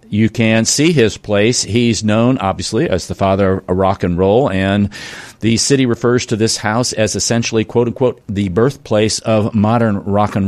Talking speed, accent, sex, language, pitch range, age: 180 wpm, American, male, English, 105-125 Hz, 50-69